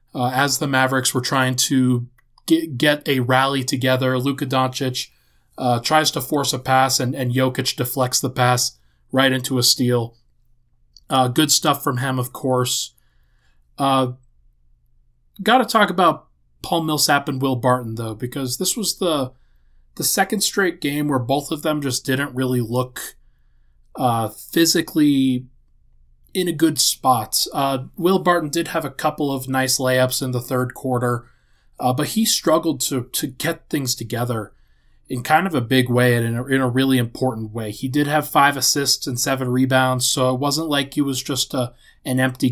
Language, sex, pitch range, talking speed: English, male, 125-145 Hz, 175 wpm